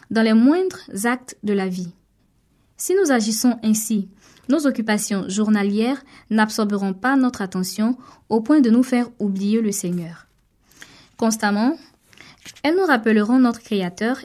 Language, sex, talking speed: French, female, 135 wpm